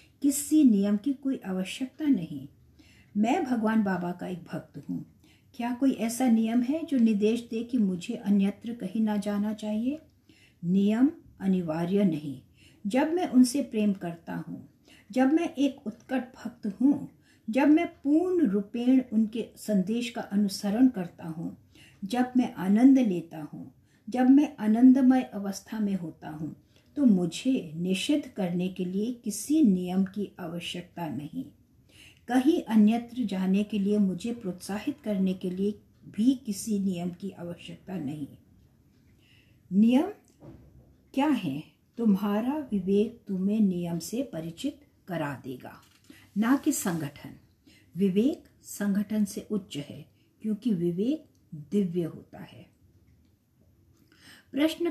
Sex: female